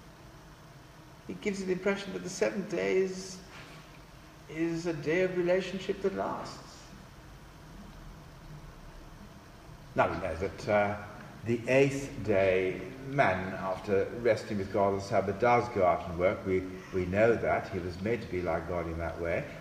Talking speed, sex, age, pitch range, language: 155 wpm, male, 60-79, 105-150 Hz, English